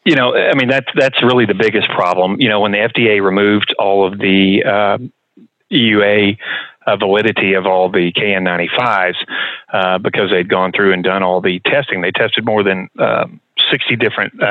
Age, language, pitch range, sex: 40-59, English, 95-105 Hz, male